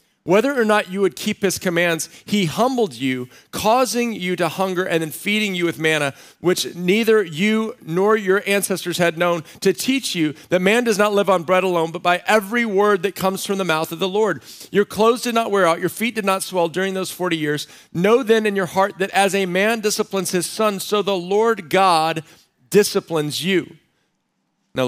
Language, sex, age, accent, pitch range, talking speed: English, male, 40-59, American, 170-210 Hz, 205 wpm